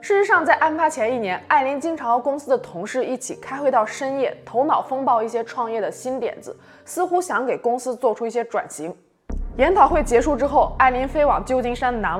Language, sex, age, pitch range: Chinese, female, 20-39, 215-295 Hz